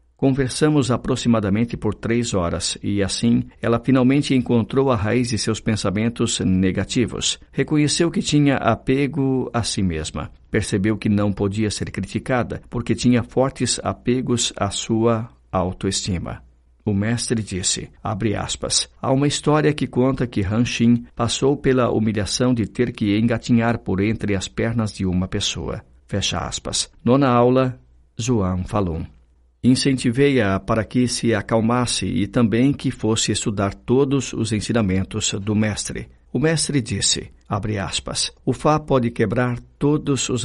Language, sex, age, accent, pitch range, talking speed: Portuguese, male, 50-69, Brazilian, 100-125 Hz, 140 wpm